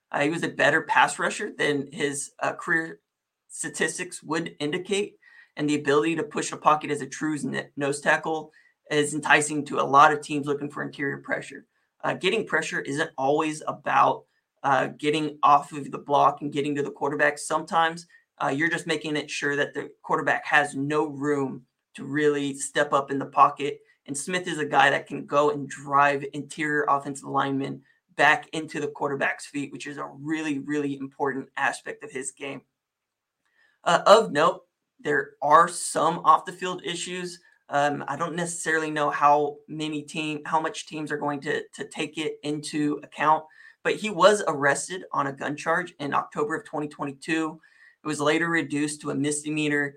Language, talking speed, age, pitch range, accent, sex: English, 180 wpm, 20-39, 145-160 Hz, American, male